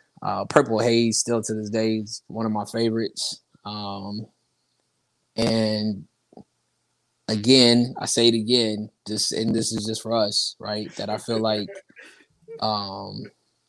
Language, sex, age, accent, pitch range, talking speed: English, male, 20-39, American, 105-115 Hz, 140 wpm